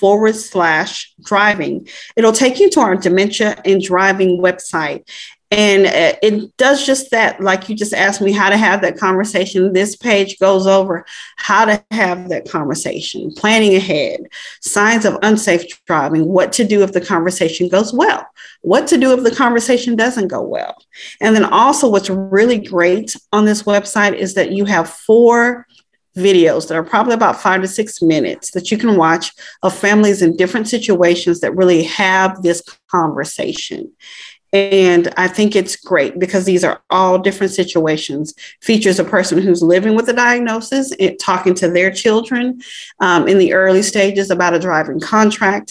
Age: 40-59